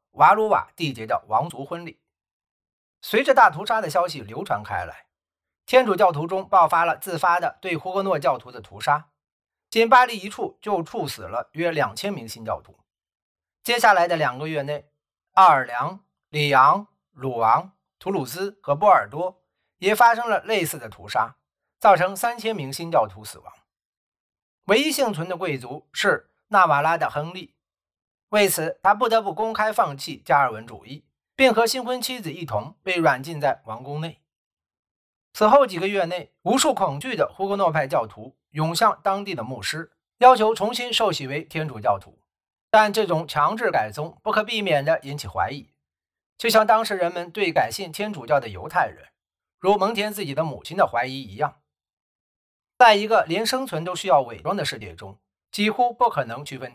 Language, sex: Chinese, male